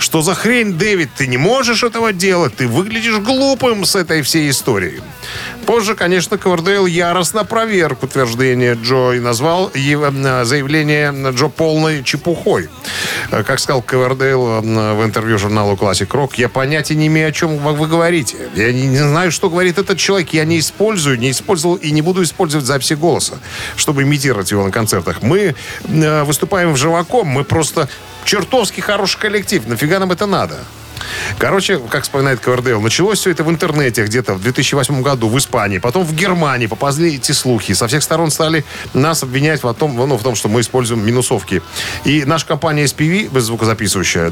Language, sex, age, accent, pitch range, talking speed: Russian, male, 50-69, native, 125-170 Hz, 165 wpm